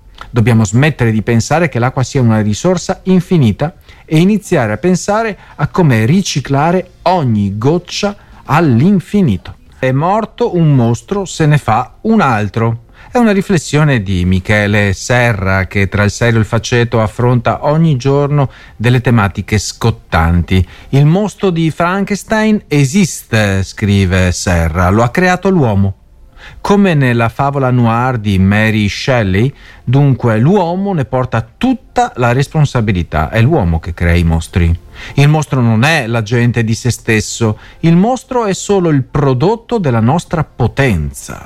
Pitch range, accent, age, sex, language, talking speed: 105-170 Hz, native, 40-59, male, Italian, 140 wpm